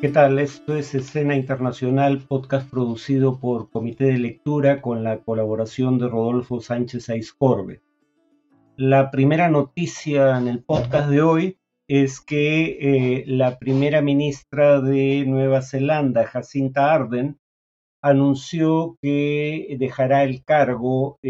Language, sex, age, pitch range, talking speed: Spanish, male, 50-69, 125-145 Hz, 125 wpm